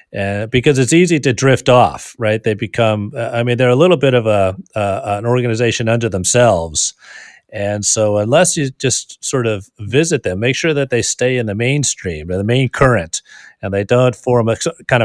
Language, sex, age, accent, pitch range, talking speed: English, male, 40-59, American, 100-125 Hz, 205 wpm